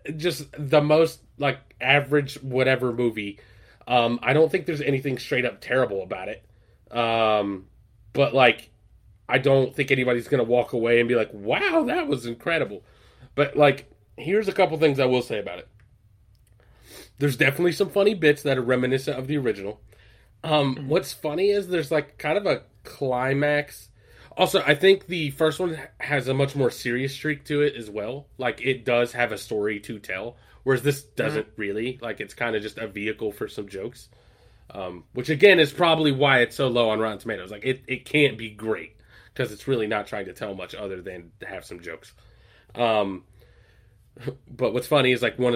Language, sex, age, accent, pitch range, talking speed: English, male, 30-49, American, 110-145 Hz, 190 wpm